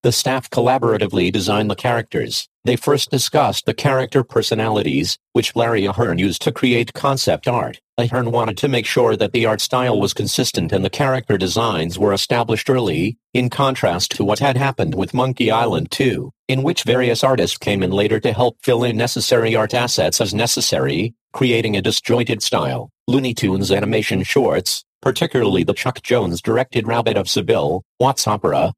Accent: American